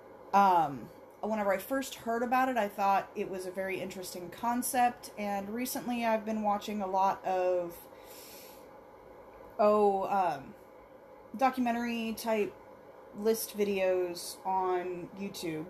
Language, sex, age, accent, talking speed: English, female, 30-49, American, 115 wpm